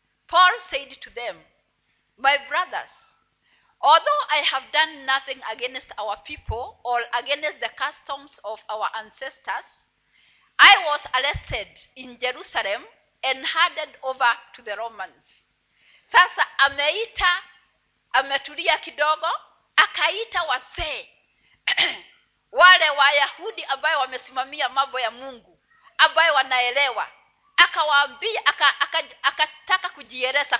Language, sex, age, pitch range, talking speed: Swahili, female, 40-59, 260-340 Hz, 100 wpm